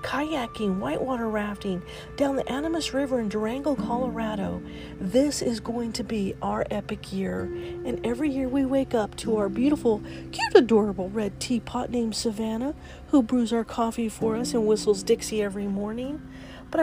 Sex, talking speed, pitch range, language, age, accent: female, 160 wpm, 205-270 Hz, English, 40-59, American